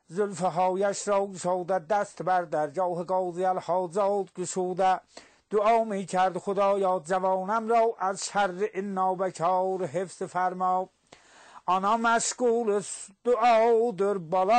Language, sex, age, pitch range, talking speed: English, male, 60-79, 180-200 Hz, 125 wpm